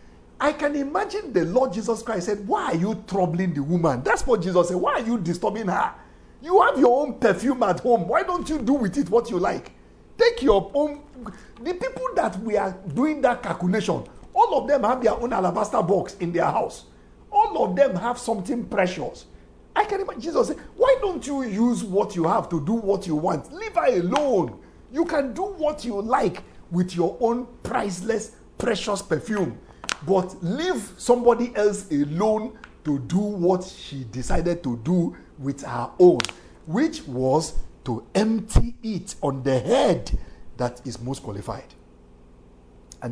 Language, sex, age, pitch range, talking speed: English, male, 50-69, 165-250 Hz, 175 wpm